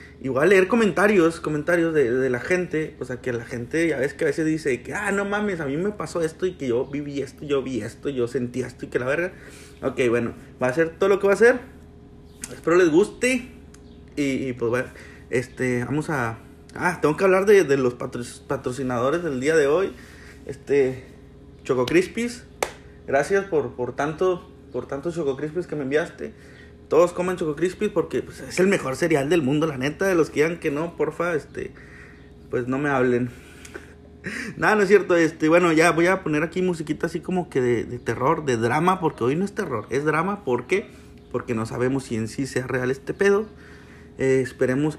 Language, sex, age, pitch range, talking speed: Spanish, male, 30-49, 130-185 Hz, 210 wpm